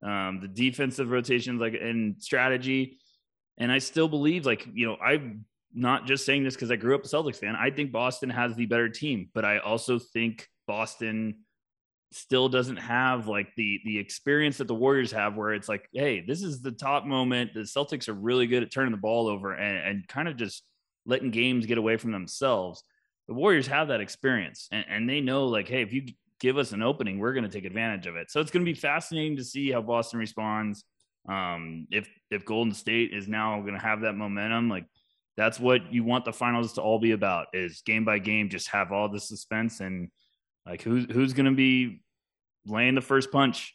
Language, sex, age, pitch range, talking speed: English, male, 20-39, 110-130 Hz, 215 wpm